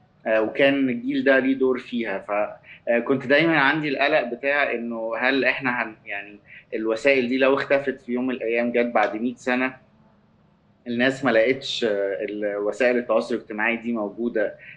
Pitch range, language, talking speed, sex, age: 110-135 Hz, Arabic, 145 wpm, male, 20-39